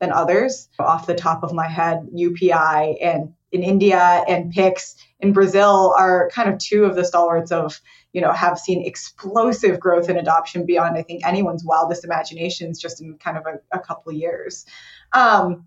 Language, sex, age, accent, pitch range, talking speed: English, female, 20-39, American, 175-205 Hz, 185 wpm